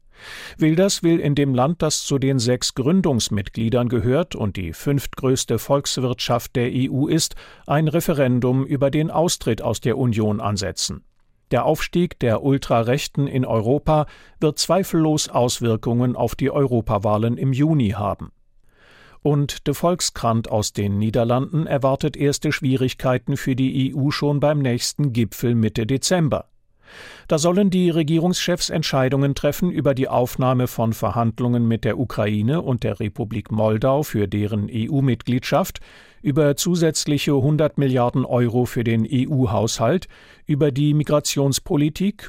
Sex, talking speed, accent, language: male, 130 wpm, German, German